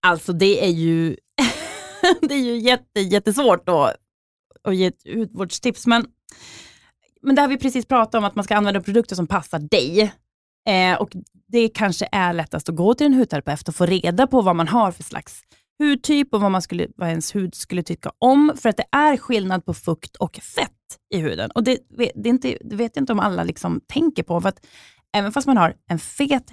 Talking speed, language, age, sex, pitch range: 215 wpm, Swedish, 20-39, female, 175-245 Hz